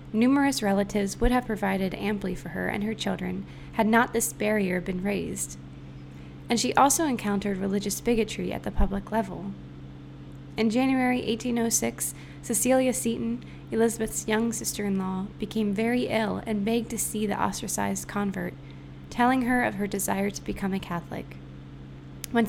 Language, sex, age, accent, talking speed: English, female, 20-39, American, 145 wpm